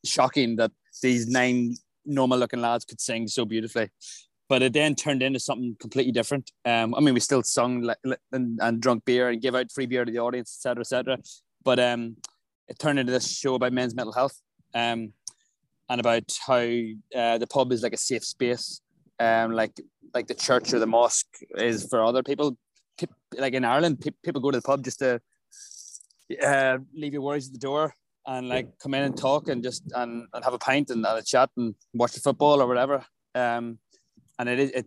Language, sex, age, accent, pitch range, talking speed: English, male, 20-39, Irish, 120-135 Hz, 200 wpm